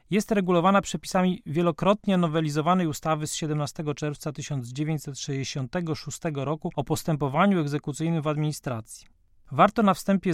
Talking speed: 110 wpm